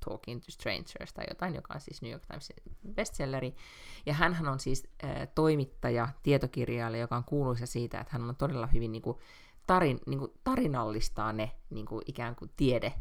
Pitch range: 120-150 Hz